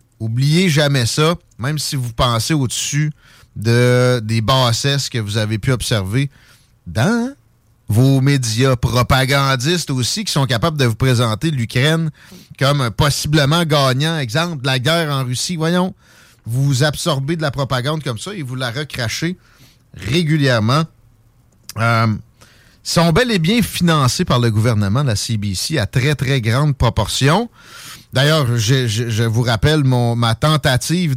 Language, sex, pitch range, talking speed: French, male, 120-155 Hz, 140 wpm